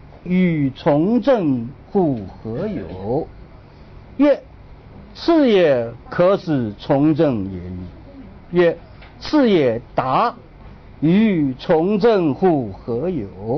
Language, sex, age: Chinese, male, 60-79